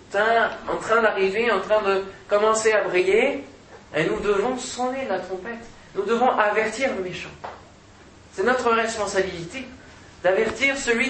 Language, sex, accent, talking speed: French, male, French, 135 wpm